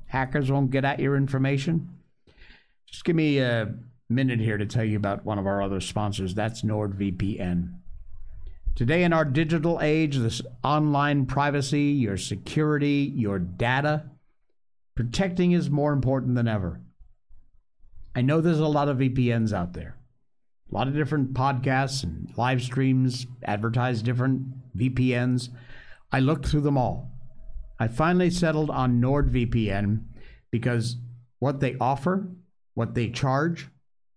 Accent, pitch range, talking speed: American, 120-155 Hz, 135 wpm